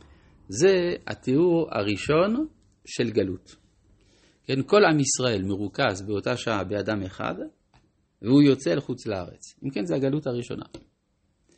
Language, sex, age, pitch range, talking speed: Hebrew, male, 50-69, 105-150 Hz, 125 wpm